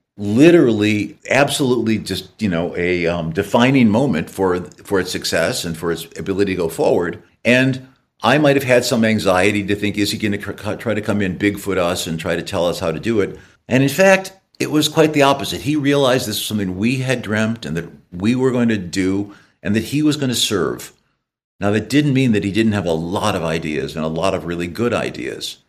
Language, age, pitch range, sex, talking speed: English, 50-69, 90-125 Hz, male, 225 wpm